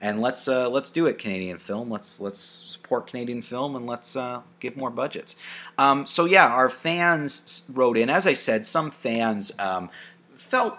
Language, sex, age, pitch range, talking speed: English, male, 30-49, 100-140 Hz, 185 wpm